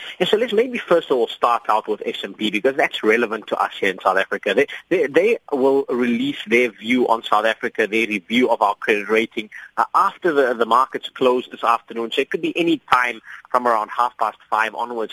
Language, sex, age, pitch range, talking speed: English, male, 30-49, 115-190 Hz, 220 wpm